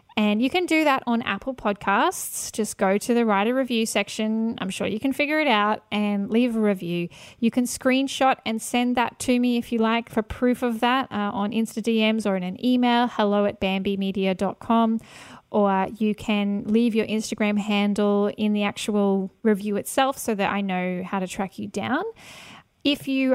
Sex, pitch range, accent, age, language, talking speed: female, 200-245 Hz, Australian, 10-29, English, 195 wpm